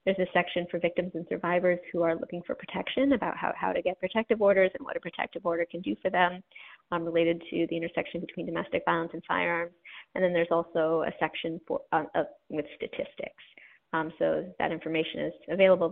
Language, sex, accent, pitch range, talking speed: English, female, American, 170-195 Hz, 200 wpm